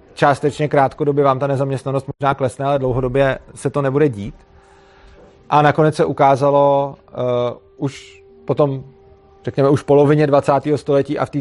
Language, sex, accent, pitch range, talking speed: Czech, male, native, 125-145 Hz, 155 wpm